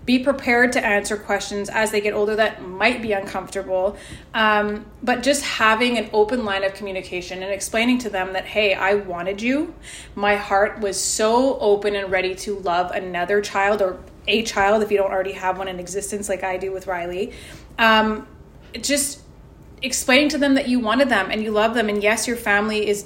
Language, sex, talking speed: English, female, 200 wpm